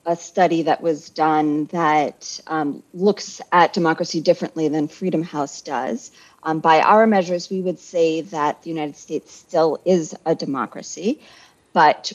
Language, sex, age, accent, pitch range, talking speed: English, female, 30-49, American, 150-175 Hz, 155 wpm